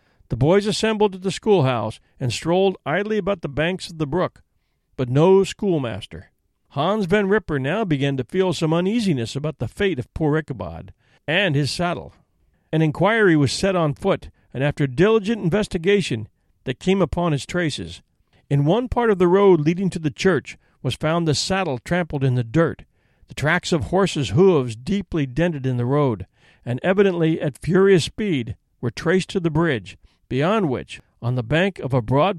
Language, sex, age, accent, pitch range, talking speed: English, male, 50-69, American, 130-190 Hz, 180 wpm